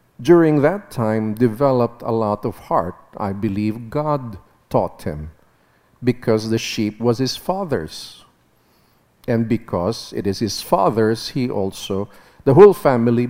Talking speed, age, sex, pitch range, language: 135 wpm, 50-69, male, 110-155 Hz, English